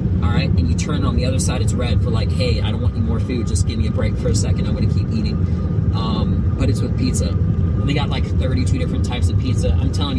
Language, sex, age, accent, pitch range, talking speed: English, male, 30-49, American, 90-100 Hz, 275 wpm